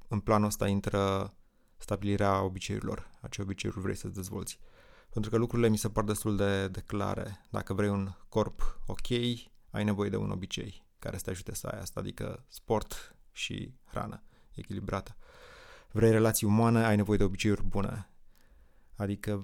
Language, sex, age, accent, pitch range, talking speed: Romanian, male, 20-39, native, 100-110 Hz, 165 wpm